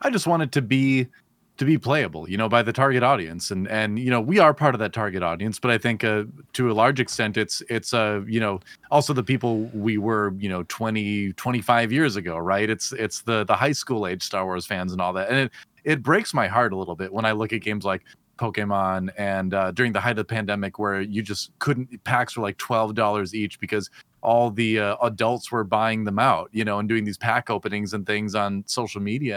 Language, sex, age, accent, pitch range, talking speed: English, male, 30-49, American, 105-135 Hz, 245 wpm